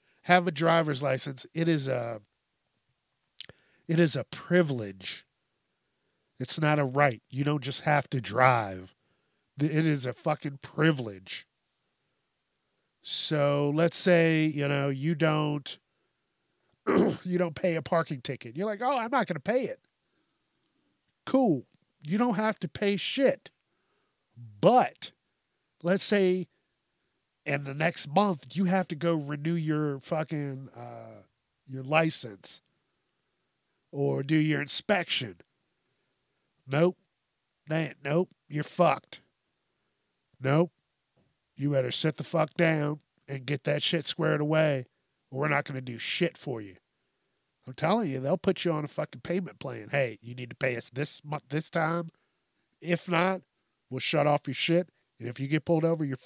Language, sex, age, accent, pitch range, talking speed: English, male, 40-59, American, 135-170 Hz, 145 wpm